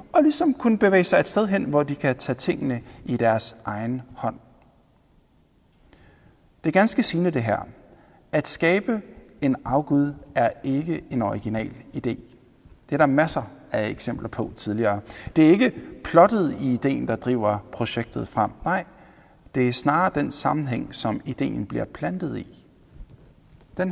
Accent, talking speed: native, 155 wpm